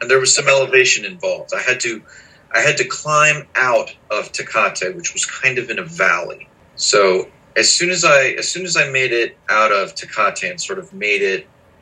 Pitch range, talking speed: 115-155 Hz, 215 wpm